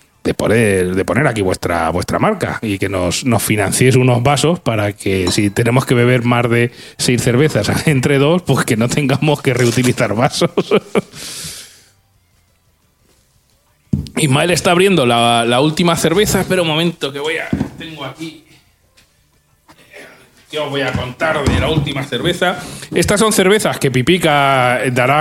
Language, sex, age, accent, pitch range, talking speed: Spanish, male, 30-49, Spanish, 120-155 Hz, 150 wpm